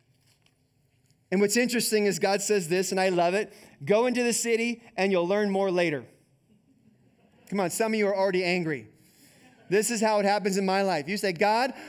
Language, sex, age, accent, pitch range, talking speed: English, male, 20-39, American, 170-215 Hz, 195 wpm